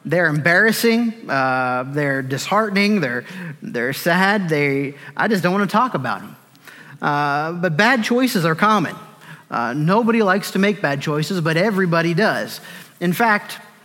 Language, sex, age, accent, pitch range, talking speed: English, male, 30-49, American, 155-200 Hz, 150 wpm